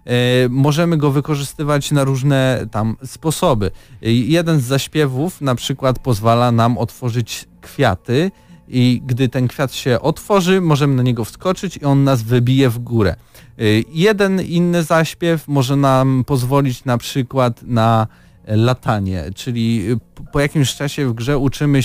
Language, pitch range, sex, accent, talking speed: Polish, 115-145 Hz, male, native, 135 wpm